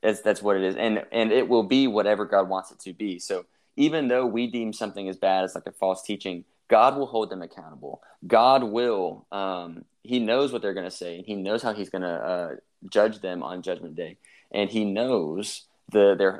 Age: 20-39